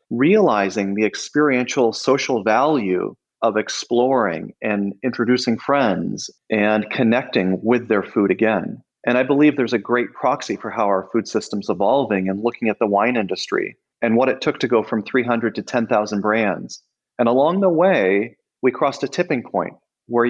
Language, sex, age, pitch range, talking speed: English, male, 40-59, 105-135 Hz, 165 wpm